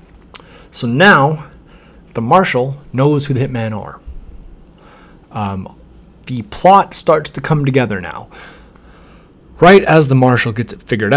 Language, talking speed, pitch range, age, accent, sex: English, 130 wpm, 115-165 Hz, 30-49, American, male